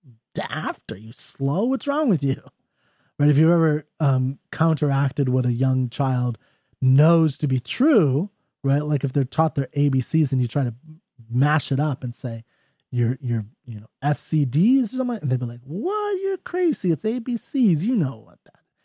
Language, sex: English, male